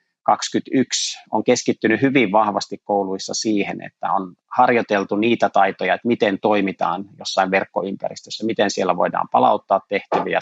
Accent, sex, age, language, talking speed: native, male, 30-49, Finnish, 125 wpm